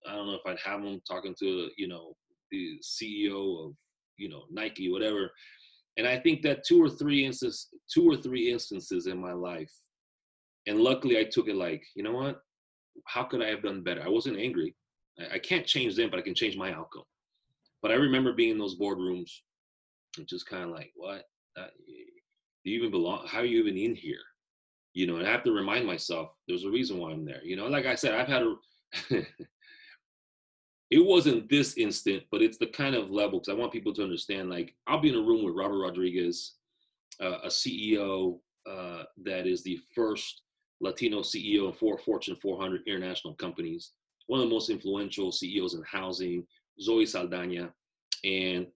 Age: 30-49